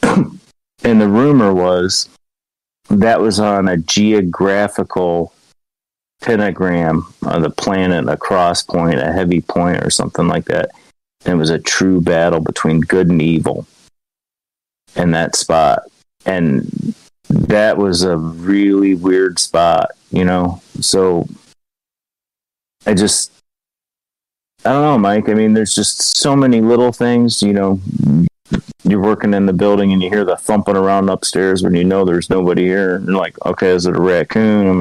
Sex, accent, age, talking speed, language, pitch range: male, American, 30-49, 150 wpm, English, 90-100 Hz